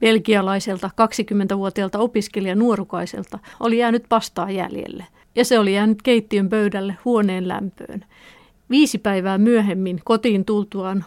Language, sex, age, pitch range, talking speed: Finnish, female, 50-69, 195-225 Hz, 120 wpm